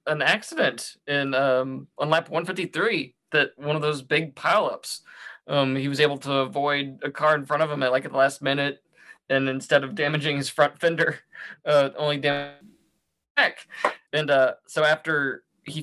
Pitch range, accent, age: 140-170 Hz, American, 20-39